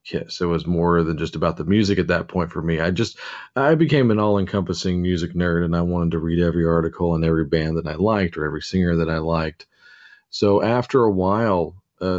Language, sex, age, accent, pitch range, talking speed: English, male, 40-59, American, 85-100 Hz, 225 wpm